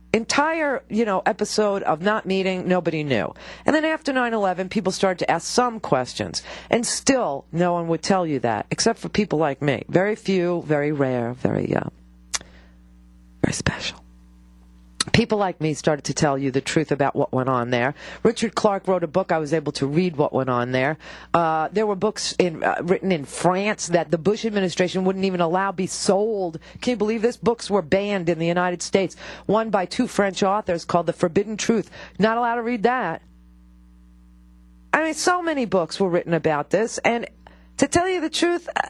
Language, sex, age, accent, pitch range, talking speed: English, female, 50-69, American, 170-245 Hz, 195 wpm